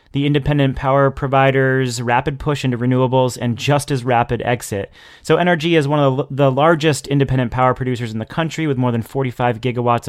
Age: 30-49